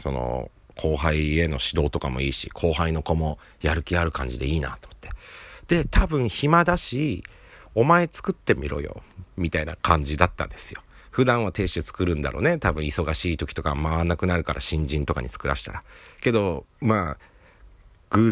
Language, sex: Japanese, male